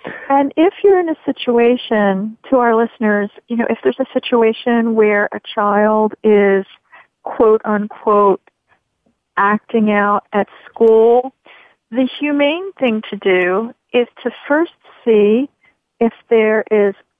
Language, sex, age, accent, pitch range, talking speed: English, female, 40-59, American, 210-255 Hz, 130 wpm